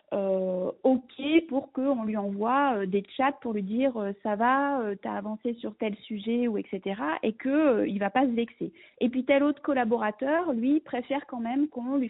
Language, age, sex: French, 40-59, female